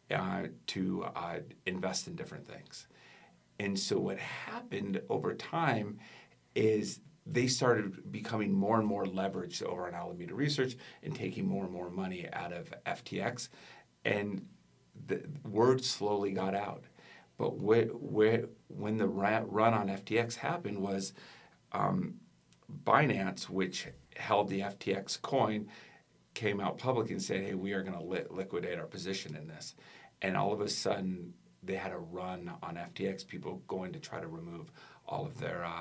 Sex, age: male, 50-69